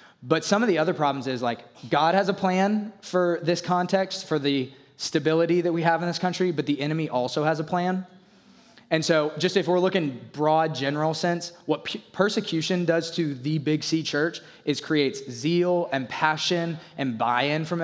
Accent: American